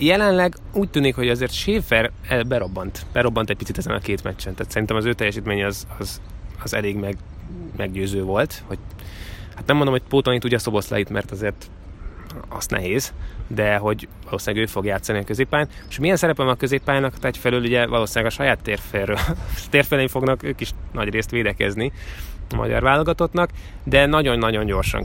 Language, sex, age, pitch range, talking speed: Hungarian, male, 20-39, 100-120 Hz, 170 wpm